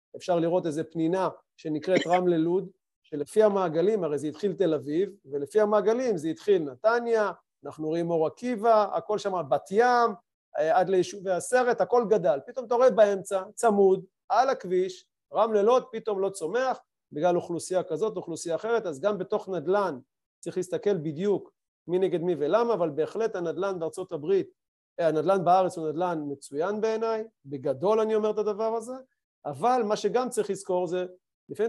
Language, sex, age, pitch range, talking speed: Hebrew, male, 40-59, 175-220 Hz, 150 wpm